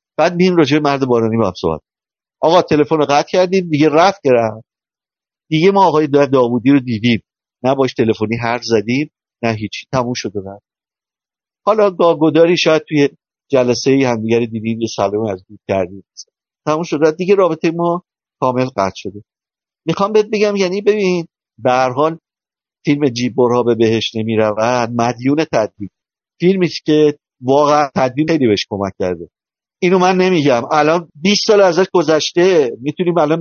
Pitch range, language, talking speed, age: 120-160 Hz, Persian, 145 wpm, 50-69